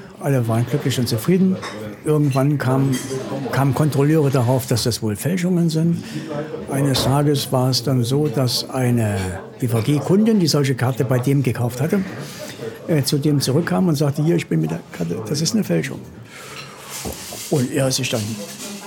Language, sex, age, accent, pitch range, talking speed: German, male, 60-79, German, 115-165 Hz, 165 wpm